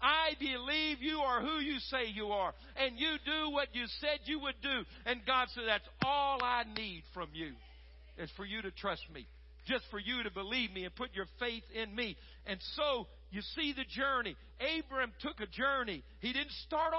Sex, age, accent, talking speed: male, 50-69, American, 205 wpm